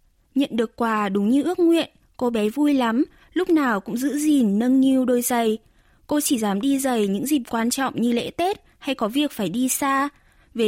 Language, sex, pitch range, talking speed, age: Vietnamese, female, 230-300 Hz, 220 wpm, 20-39